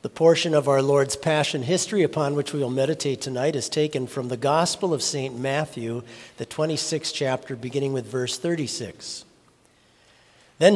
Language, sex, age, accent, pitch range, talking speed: English, male, 50-69, American, 135-180 Hz, 160 wpm